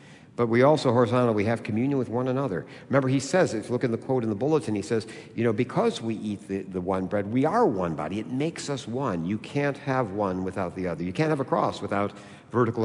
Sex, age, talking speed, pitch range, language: male, 60-79, 255 wpm, 100-135 Hz, English